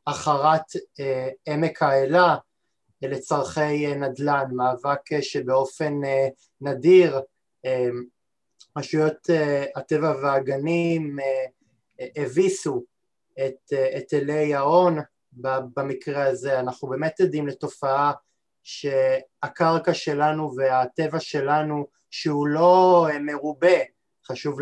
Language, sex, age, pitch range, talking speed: Hebrew, male, 20-39, 130-155 Hz, 100 wpm